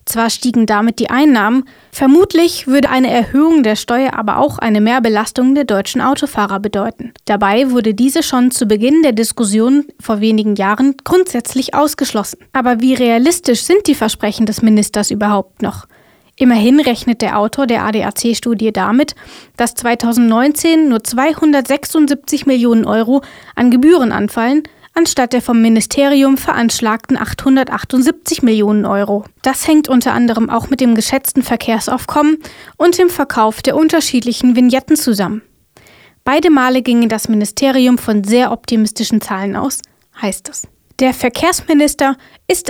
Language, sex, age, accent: German, female, 20-39, German